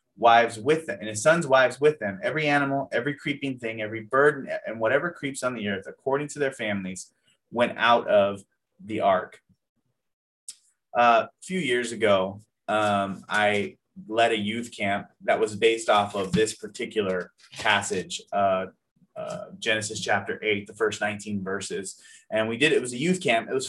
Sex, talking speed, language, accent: male, 170 wpm, English, American